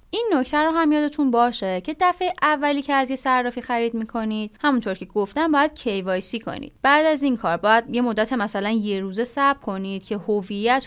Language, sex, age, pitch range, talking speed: Persian, female, 10-29, 205-310 Hz, 195 wpm